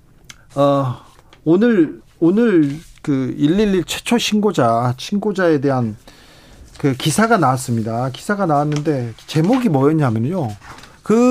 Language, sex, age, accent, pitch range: Korean, male, 40-59, native, 135-185 Hz